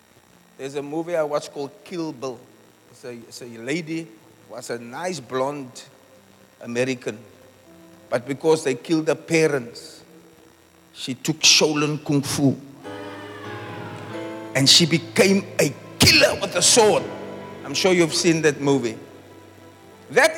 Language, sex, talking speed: English, male, 135 wpm